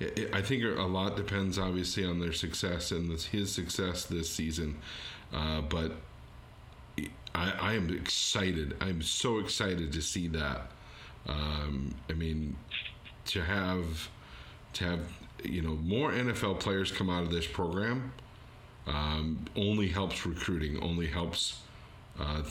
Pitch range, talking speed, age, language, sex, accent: 80-105 Hz, 135 wpm, 40-59, English, male, American